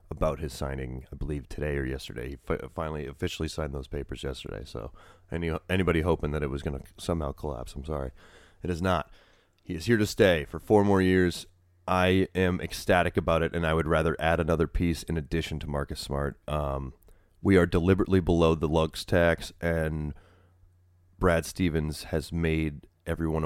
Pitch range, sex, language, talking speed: 75-90 Hz, male, English, 180 wpm